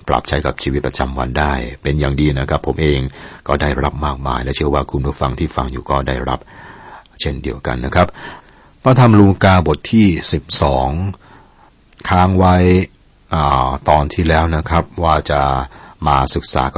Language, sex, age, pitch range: Thai, male, 60-79, 70-85 Hz